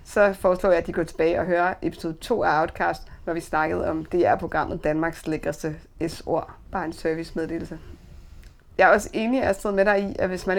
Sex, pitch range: female, 165-200 Hz